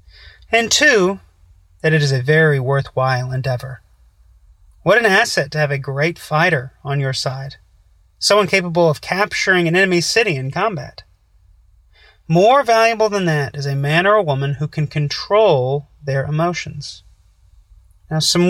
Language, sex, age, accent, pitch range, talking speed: English, male, 30-49, American, 105-175 Hz, 150 wpm